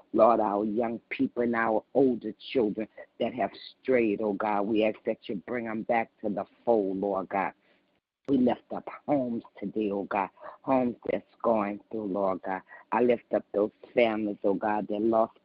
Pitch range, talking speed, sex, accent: 105-120 Hz, 185 wpm, female, American